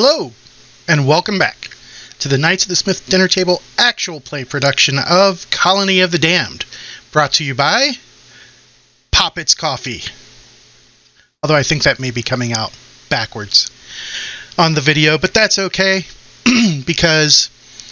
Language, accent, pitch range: English, American, 125-170 Hz